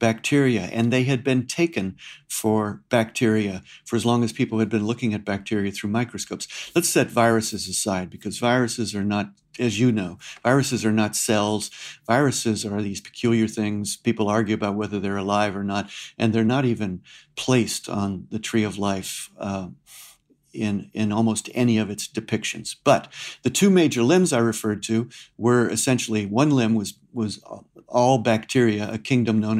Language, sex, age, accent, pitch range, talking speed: English, male, 50-69, American, 110-125 Hz, 170 wpm